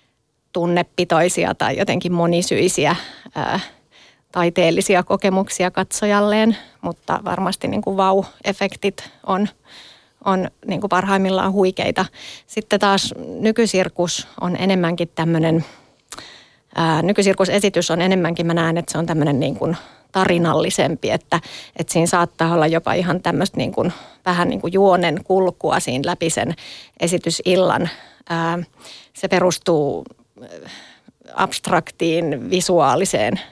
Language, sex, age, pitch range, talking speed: Finnish, female, 30-49, 165-190 Hz, 100 wpm